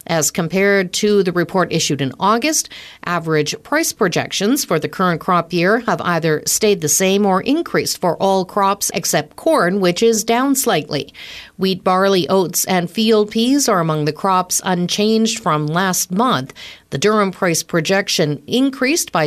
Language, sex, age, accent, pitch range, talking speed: English, female, 50-69, American, 175-220 Hz, 160 wpm